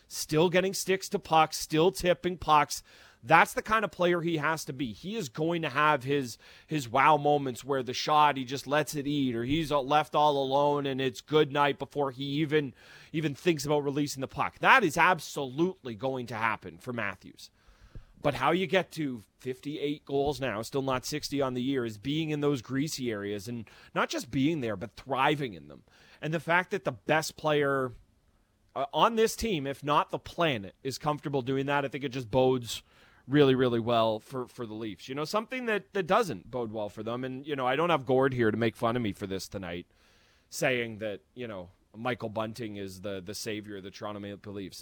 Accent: American